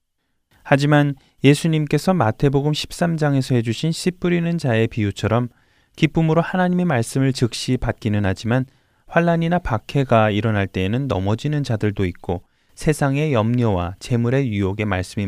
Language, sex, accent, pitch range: Korean, male, native, 100-145 Hz